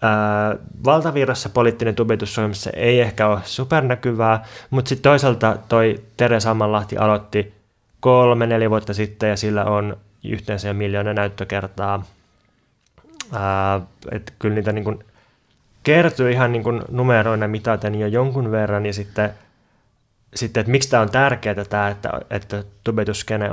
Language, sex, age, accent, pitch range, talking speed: Finnish, male, 20-39, native, 105-125 Hz, 130 wpm